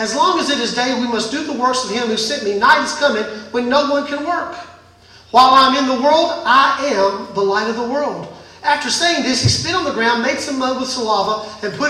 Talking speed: 260 wpm